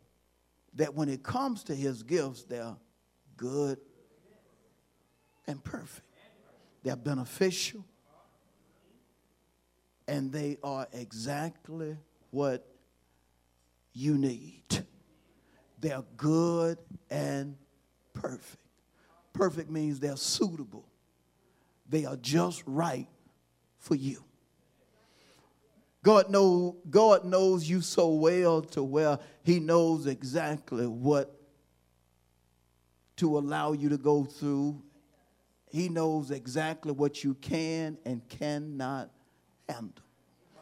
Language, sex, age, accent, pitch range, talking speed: English, male, 50-69, American, 120-165 Hz, 90 wpm